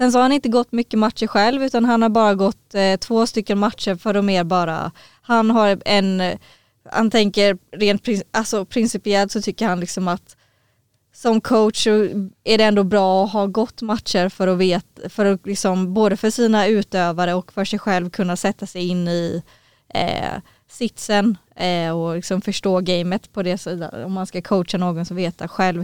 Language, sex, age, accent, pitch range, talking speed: Swedish, female, 20-39, native, 175-210 Hz, 190 wpm